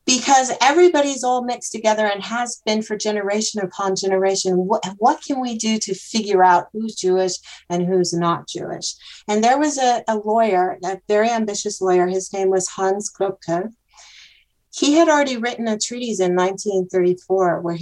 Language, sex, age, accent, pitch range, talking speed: English, female, 40-59, American, 180-220 Hz, 170 wpm